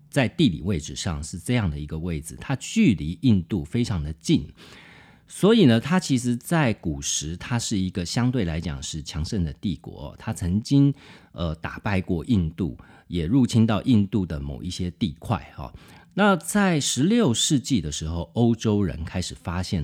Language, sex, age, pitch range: Chinese, male, 40-59, 80-120 Hz